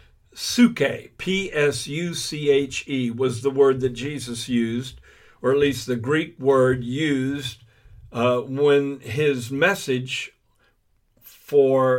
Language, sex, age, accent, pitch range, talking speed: English, male, 50-69, American, 125-160 Hz, 125 wpm